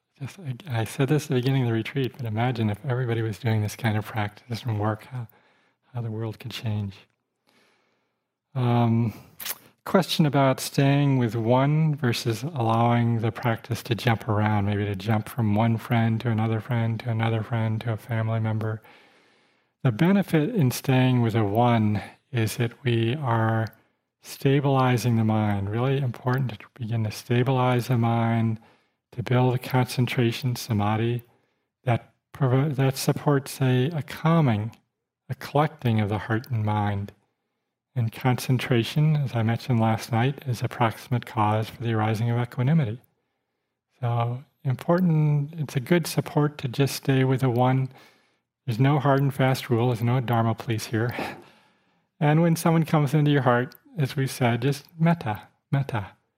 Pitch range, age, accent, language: 115-135 Hz, 40-59, American, English